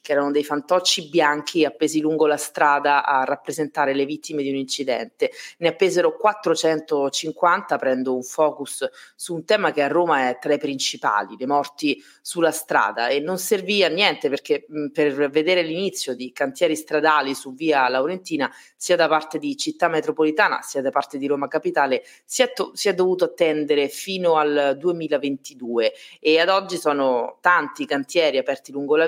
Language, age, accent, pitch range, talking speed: Italian, 30-49, native, 140-175 Hz, 165 wpm